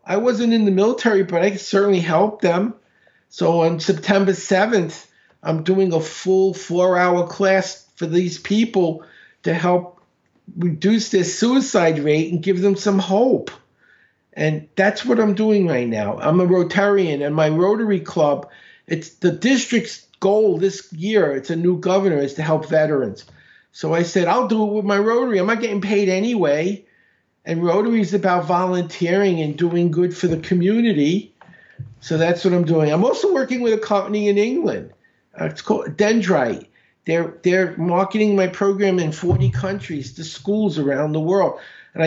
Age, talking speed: 50-69, 170 wpm